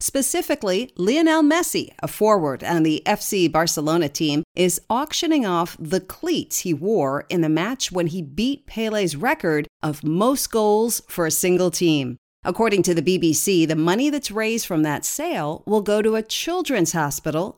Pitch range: 165-245 Hz